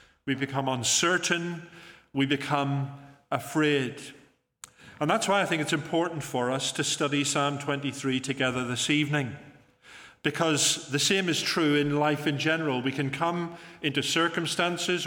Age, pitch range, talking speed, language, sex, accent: 40-59, 140-160 Hz, 145 wpm, English, male, British